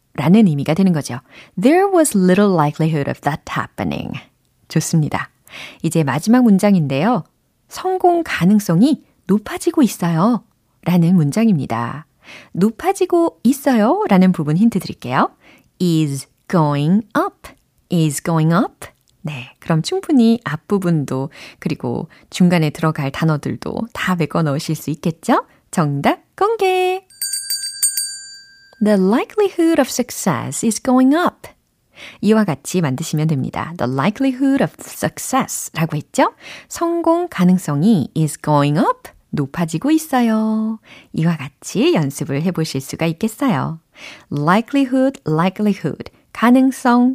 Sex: female